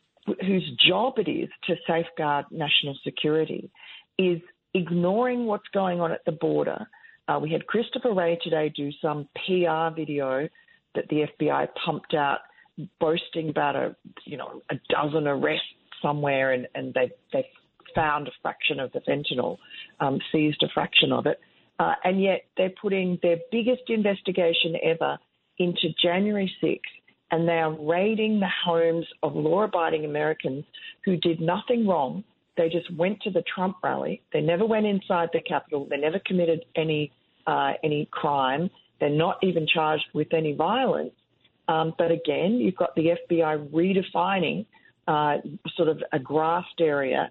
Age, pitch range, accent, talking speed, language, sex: 40-59, 155-185 Hz, Australian, 155 wpm, English, female